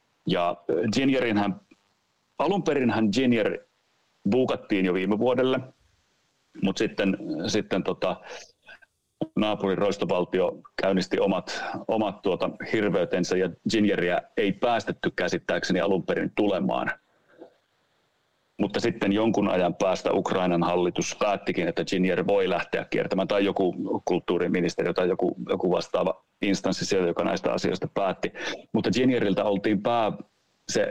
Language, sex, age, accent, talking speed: Finnish, male, 30-49, native, 110 wpm